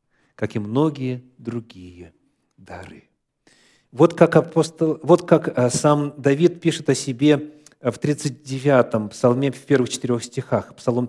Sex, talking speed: male, 125 wpm